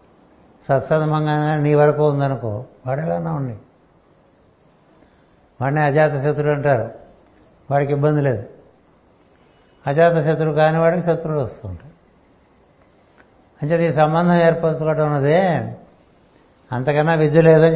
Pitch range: 130-155 Hz